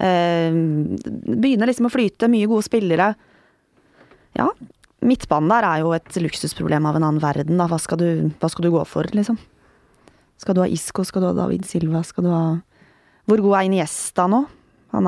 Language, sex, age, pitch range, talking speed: English, female, 20-39, 155-195 Hz, 185 wpm